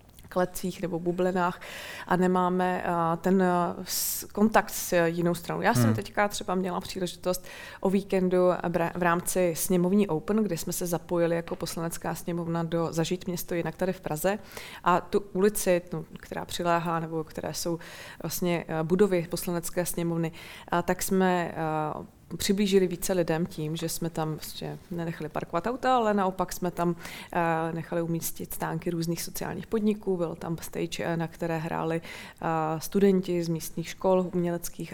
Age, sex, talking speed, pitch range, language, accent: 20-39, female, 140 wpm, 170-190 Hz, Czech, native